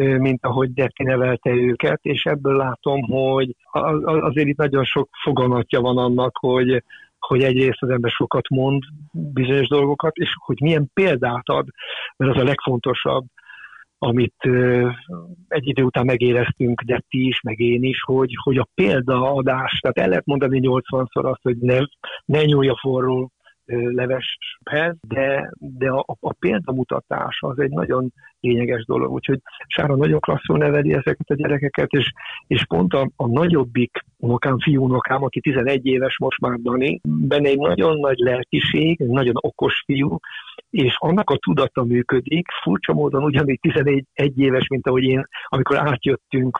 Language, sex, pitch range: Hungarian, male, 125-145 Hz